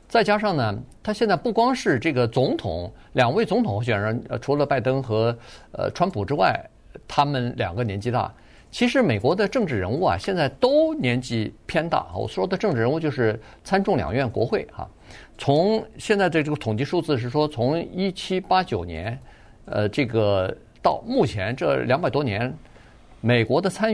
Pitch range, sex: 110-150 Hz, male